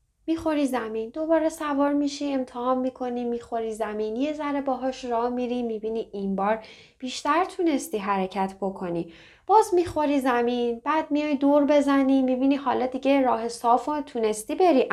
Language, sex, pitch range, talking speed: Persian, female, 210-280 Hz, 140 wpm